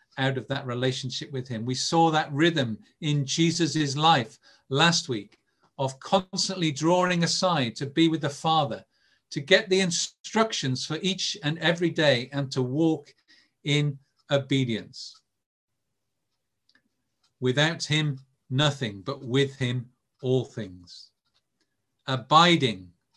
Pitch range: 125-160 Hz